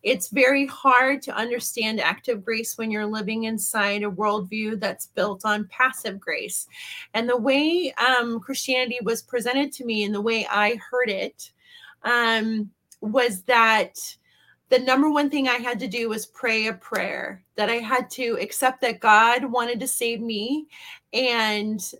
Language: English